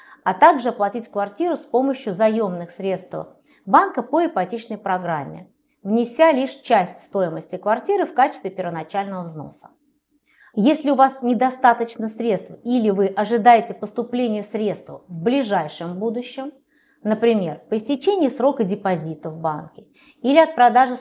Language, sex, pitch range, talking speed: Russian, female, 195-275 Hz, 125 wpm